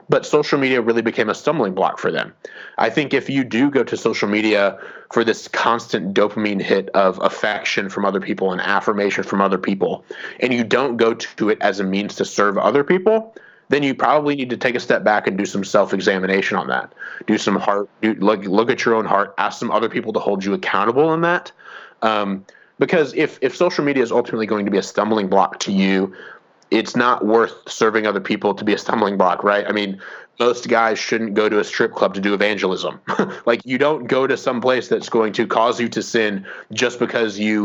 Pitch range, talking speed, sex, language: 100-120 Hz, 225 wpm, male, English